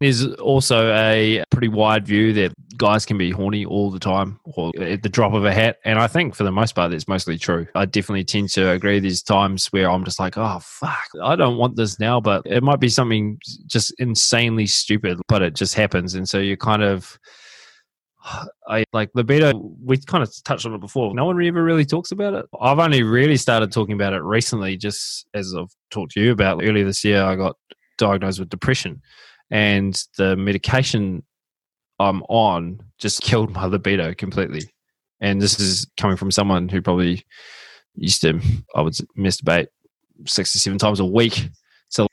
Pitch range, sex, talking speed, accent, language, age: 95-115 Hz, male, 195 wpm, Australian, English, 20-39